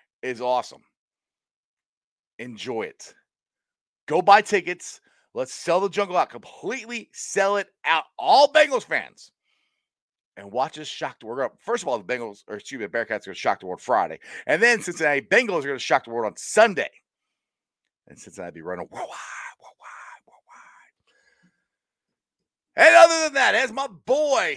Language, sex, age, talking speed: English, male, 40-59, 165 wpm